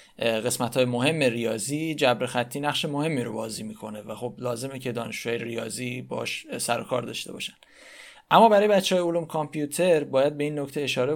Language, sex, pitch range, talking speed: Persian, male, 120-150 Hz, 175 wpm